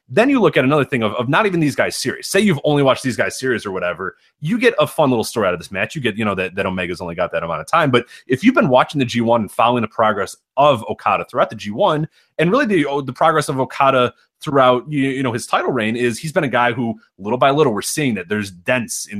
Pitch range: 110-140 Hz